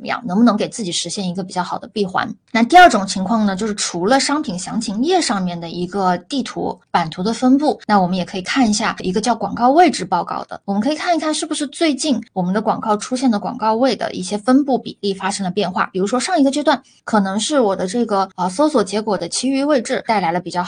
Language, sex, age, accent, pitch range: Chinese, female, 20-39, native, 185-245 Hz